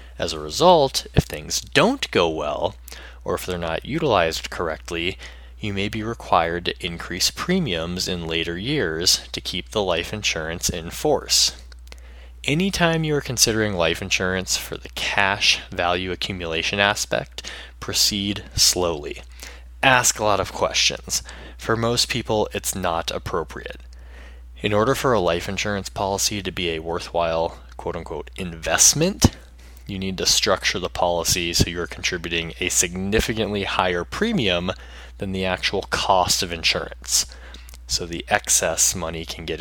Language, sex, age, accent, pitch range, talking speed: English, male, 20-39, American, 65-105 Hz, 140 wpm